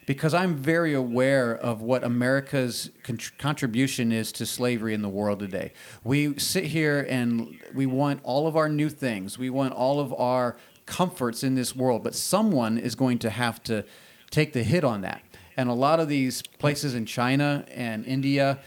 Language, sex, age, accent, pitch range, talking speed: English, male, 40-59, American, 115-140 Hz, 185 wpm